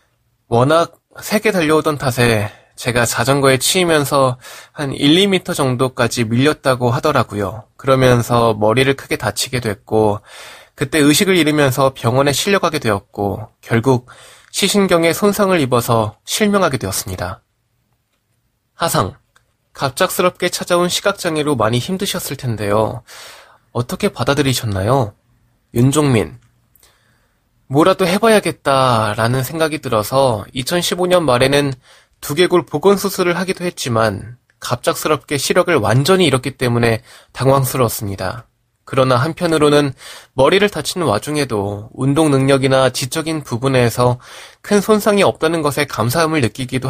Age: 20-39